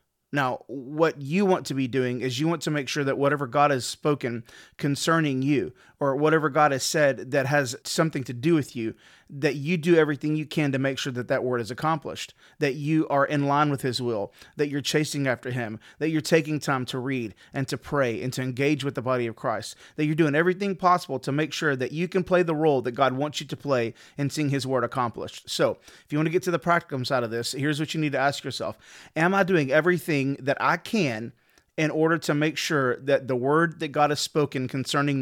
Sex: male